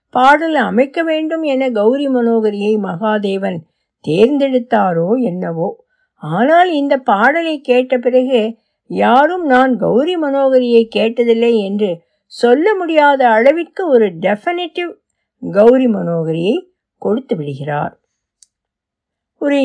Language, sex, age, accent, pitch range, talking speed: Tamil, female, 60-79, native, 210-295 Hz, 90 wpm